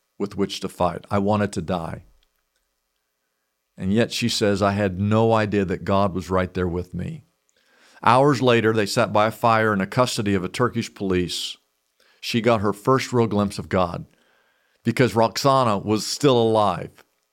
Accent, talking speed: American, 175 wpm